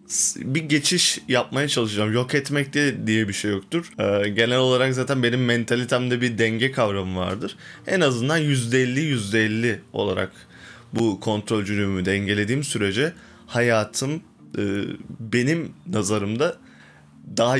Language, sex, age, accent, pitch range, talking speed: Turkish, male, 20-39, native, 105-135 Hz, 120 wpm